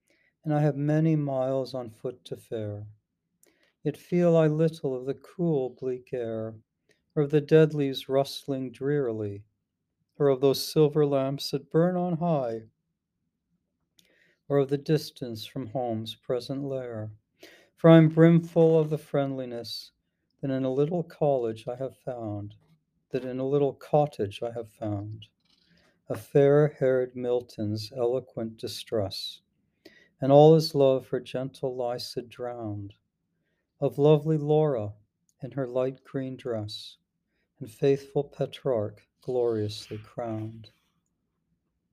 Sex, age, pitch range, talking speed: male, 60-79, 115-150 Hz, 130 wpm